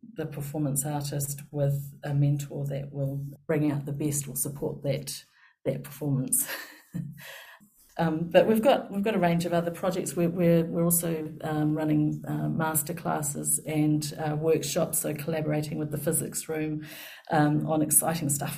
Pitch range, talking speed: 140-165 Hz, 160 wpm